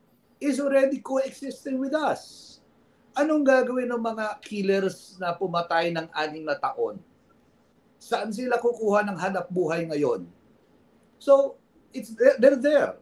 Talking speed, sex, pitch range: 125 wpm, male, 175-245 Hz